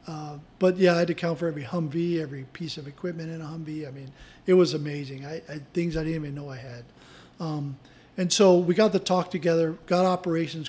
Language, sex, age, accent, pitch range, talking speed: English, male, 40-59, American, 155-175 Hz, 230 wpm